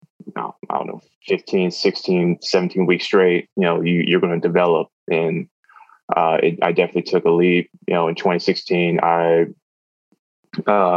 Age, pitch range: 20-39, 85-95 Hz